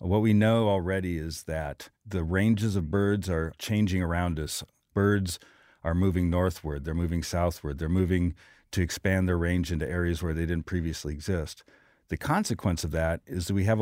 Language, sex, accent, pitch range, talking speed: English, male, American, 85-105 Hz, 180 wpm